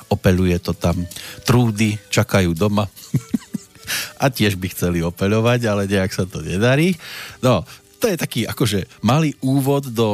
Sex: male